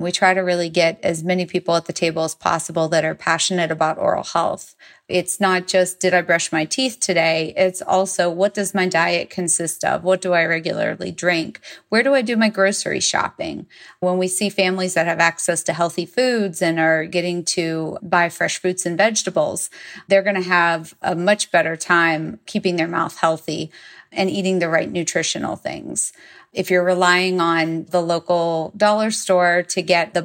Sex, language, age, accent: female, English, 30-49, American